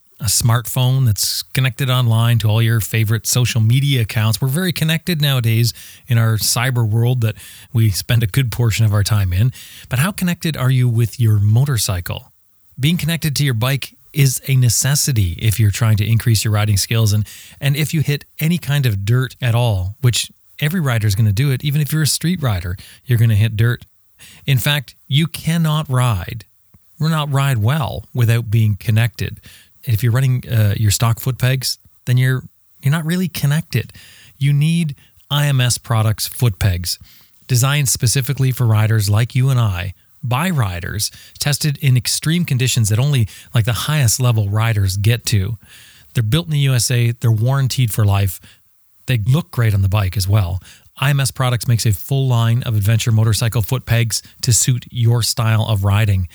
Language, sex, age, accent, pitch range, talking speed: English, male, 30-49, American, 110-135 Hz, 185 wpm